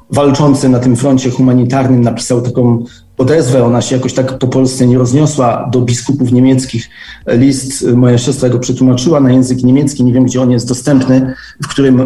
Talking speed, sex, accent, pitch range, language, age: 175 wpm, male, native, 130-185 Hz, Polish, 40-59